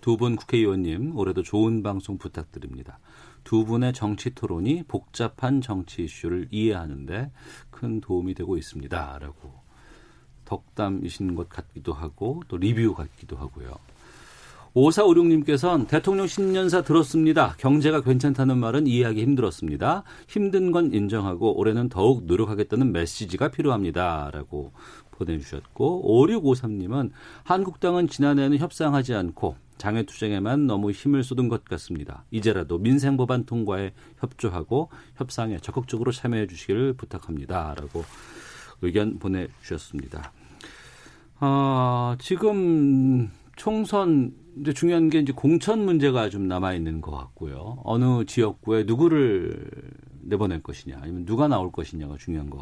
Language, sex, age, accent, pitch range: Korean, male, 40-59, native, 90-140 Hz